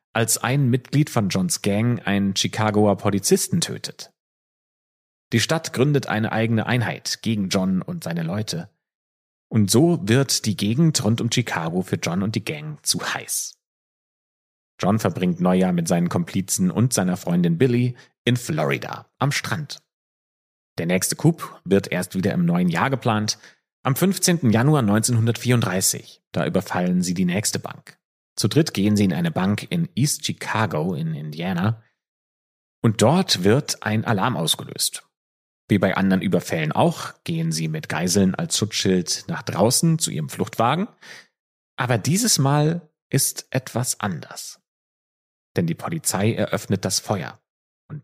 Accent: German